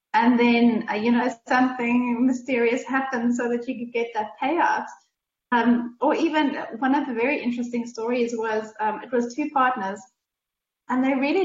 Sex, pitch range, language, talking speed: female, 220-270 Hz, English, 170 wpm